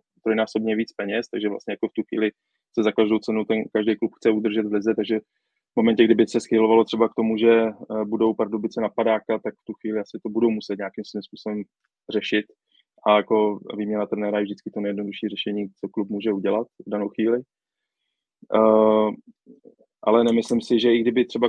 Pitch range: 105-110 Hz